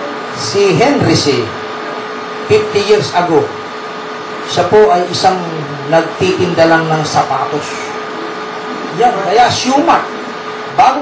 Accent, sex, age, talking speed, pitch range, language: native, male, 40-59, 100 wpm, 145-230 Hz, Filipino